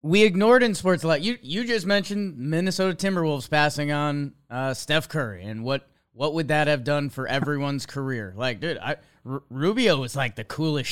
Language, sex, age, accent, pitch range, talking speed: English, male, 30-49, American, 130-175 Hz, 185 wpm